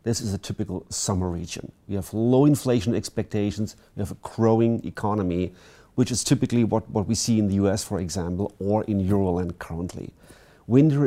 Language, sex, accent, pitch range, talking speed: English, male, German, 100-120 Hz, 180 wpm